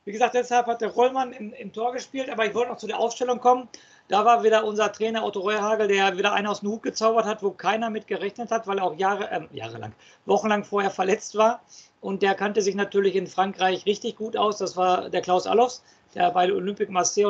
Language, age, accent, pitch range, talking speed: German, 50-69, German, 195-230 Hz, 230 wpm